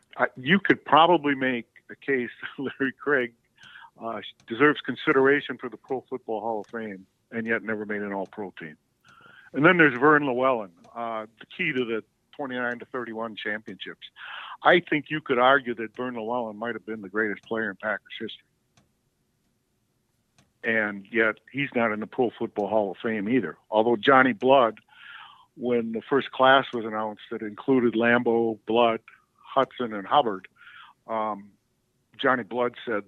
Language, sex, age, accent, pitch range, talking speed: English, male, 50-69, American, 110-130 Hz, 160 wpm